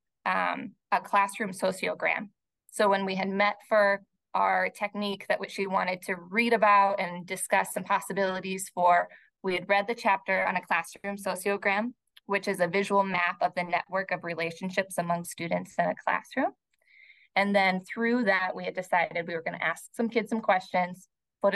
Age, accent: 20-39, American